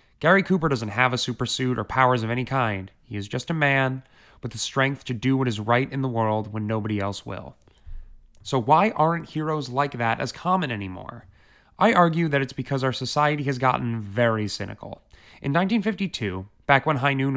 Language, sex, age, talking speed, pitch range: English, male, 20-39, 200 wpm, 110-145 Hz